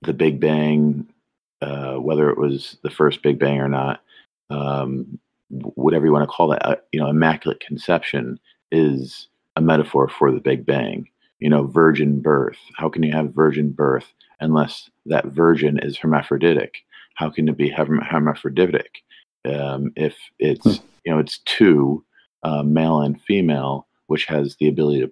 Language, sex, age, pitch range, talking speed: English, male, 40-59, 70-80 Hz, 160 wpm